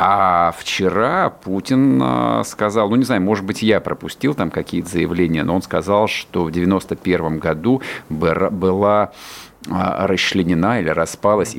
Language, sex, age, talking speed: Russian, male, 50-69, 135 wpm